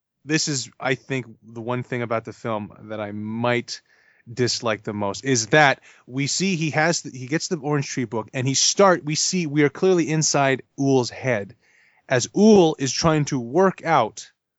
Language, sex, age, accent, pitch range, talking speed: English, male, 30-49, American, 115-145 Hz, 195 wpm